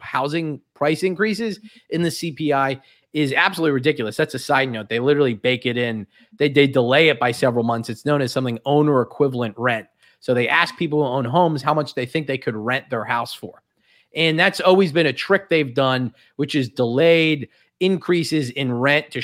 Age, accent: 30-49, American